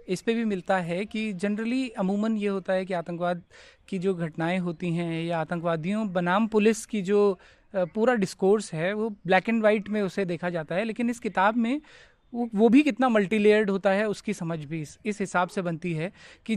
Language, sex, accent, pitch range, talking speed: Hindi, male, native, 185-225 Hz, 205 wpm